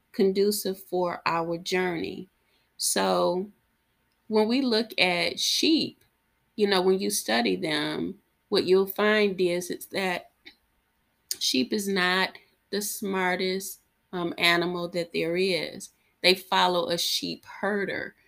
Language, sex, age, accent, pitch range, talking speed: English, female, 30-49, American, 175-200 Hz, 120 wpm